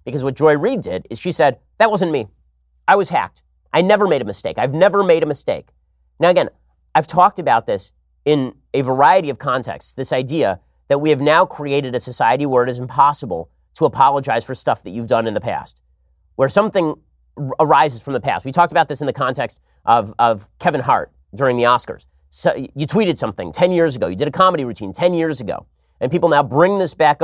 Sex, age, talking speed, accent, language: male, 30-49, 215 wpm, American, English